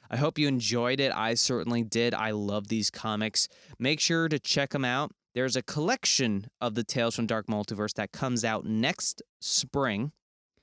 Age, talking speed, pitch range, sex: 20-39, 180 wpm, 110-130 Hz, male